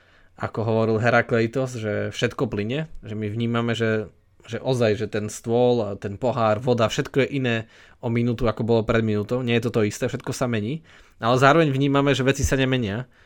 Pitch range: 110-130 Hz